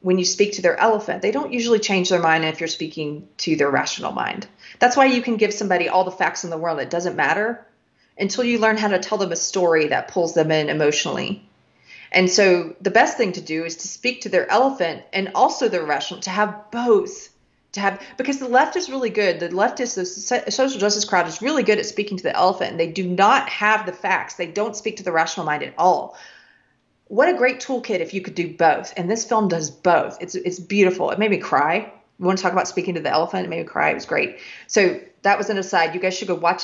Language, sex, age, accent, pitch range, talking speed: English, female, 30-49, American, 165-215 Hz, 250 wpm